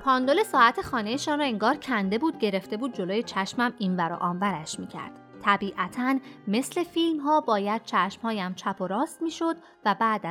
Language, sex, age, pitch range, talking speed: Persian, female, 30-49, 195-285 Hz, 175 wpm